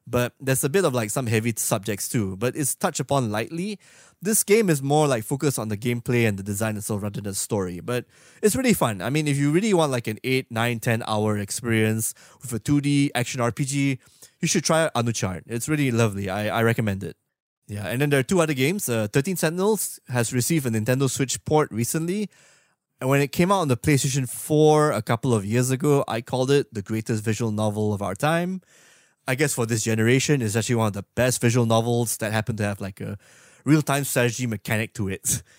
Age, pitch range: 20-39, 110-140 Hz